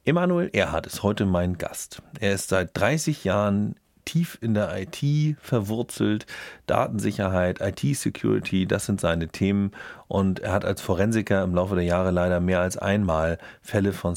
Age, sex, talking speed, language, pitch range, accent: 40-59, male, 155 wpm, German, 90-115 Hz, German